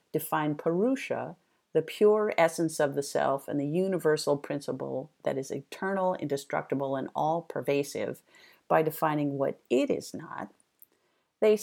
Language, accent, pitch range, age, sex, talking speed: English, American, 145-185 Hz, 50-69, female, 130 wpm